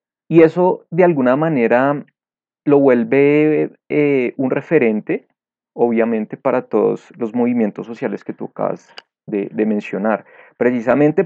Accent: Colombian